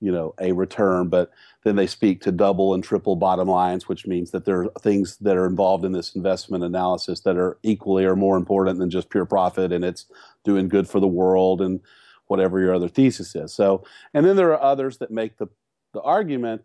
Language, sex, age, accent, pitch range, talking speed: English, male, 40-59, American, 95-105 Hz, 220 wpm